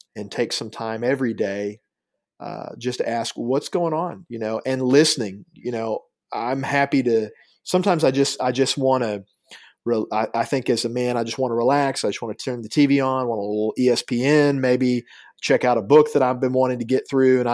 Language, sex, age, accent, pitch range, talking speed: English, male, 40-59, American, 120-140 Hz, 220 wpm